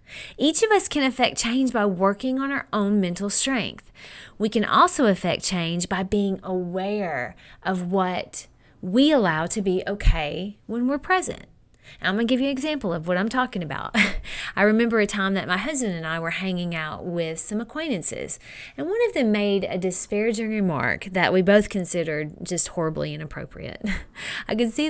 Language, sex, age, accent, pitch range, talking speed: English, female, 30-49, American, 180-235 Hz, 185 wpm